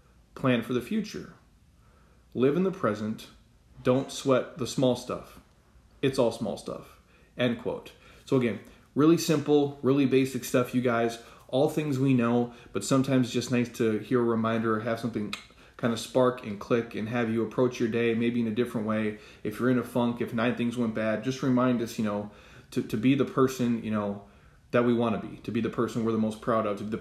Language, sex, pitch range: English, male, 110-125 Hz